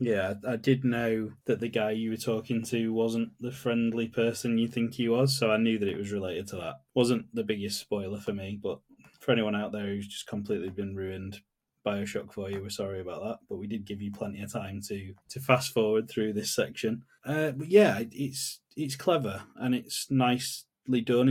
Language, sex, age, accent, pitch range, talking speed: English, male, 20-39, British, 105-125 Hz, 215 wpm